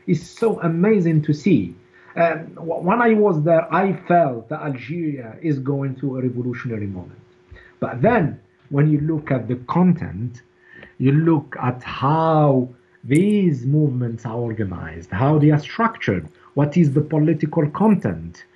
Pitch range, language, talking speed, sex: 125-155 Hz, English, 145 wpm, male